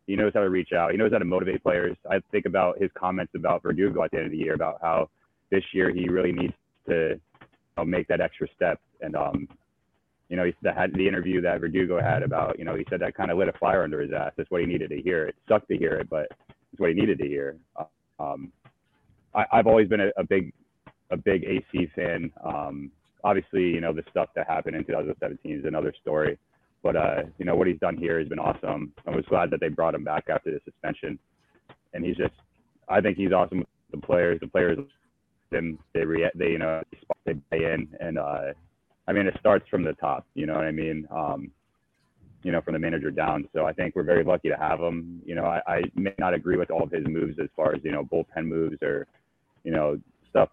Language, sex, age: English, male, 30-49